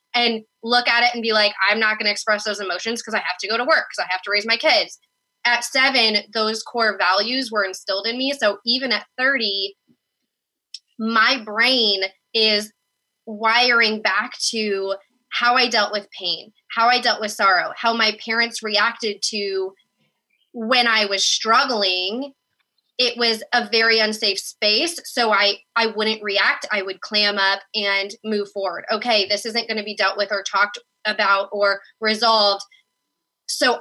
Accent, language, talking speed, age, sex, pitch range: American, English, 175 wpm, 20-39, female, 200-235 Hz